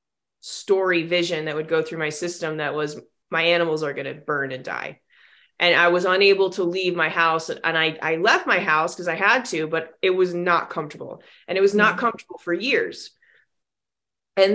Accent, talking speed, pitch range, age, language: American, 200 wpm, 175-215 Hz, 20-39, English